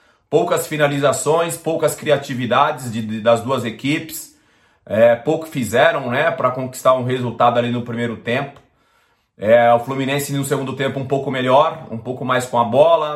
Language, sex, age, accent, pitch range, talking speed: Portuguese, male, 30-49, Brazilian, 120-150 Hz, 145 wpm